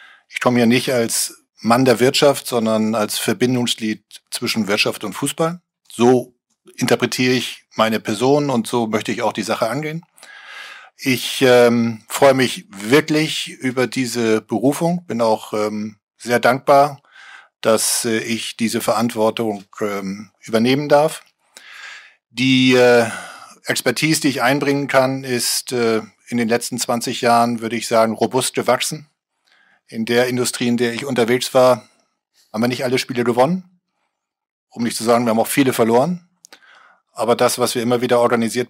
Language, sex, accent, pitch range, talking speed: German, male, German, 110-135 Hz, 150 wpm